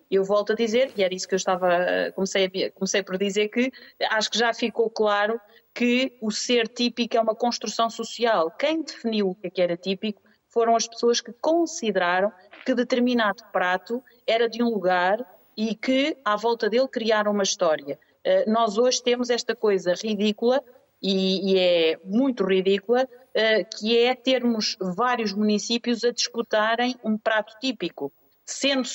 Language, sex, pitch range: Portuguese, female, 200-255 Hz